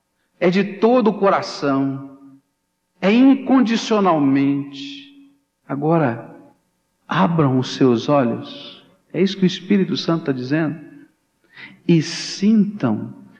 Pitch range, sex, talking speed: 140-230 Hz, male, 100 wpm